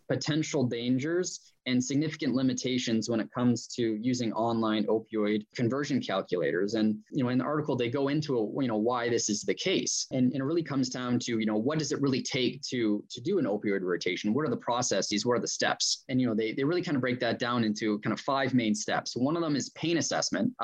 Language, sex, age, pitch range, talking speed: English, male, 20-39, 110-140 Hz, 225 wpm